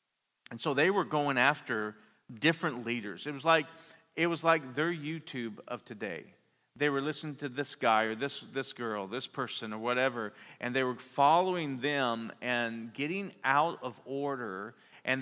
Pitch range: 120-150 Hz